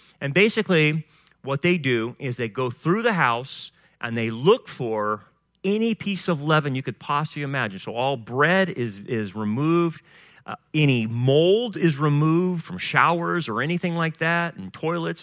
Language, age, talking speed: English, 40-59, 165 wpm